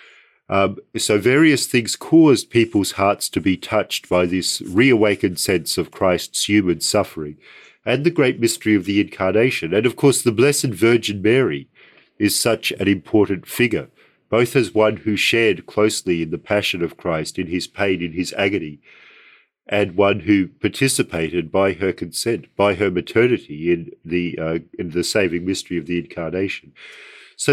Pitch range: 90-125 Hz